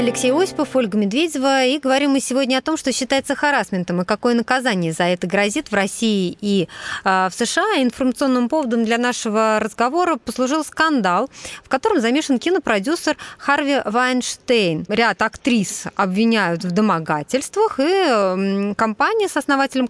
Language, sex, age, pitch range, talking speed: Russian, female, 20-39, 195-260 Hz, 140 wpm